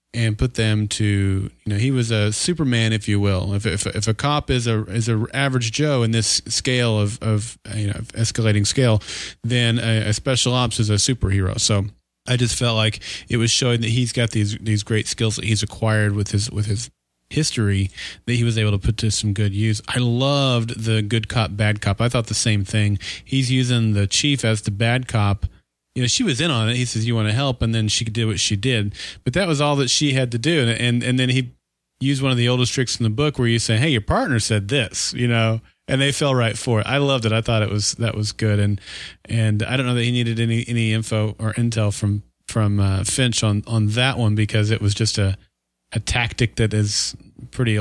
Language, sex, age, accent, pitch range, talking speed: English, male, 30-49, American, 105-120 Hz, 245 wpm